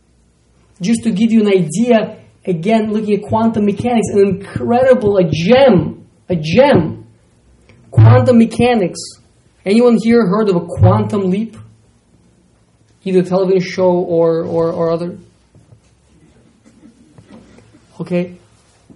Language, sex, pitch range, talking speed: English, male, 170-240 Hz, 110 wpm